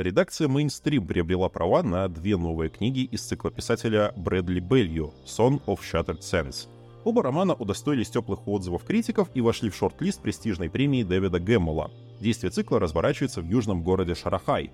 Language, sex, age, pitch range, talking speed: Russian, male, 20-39, 90-130 Hz, 155 wpm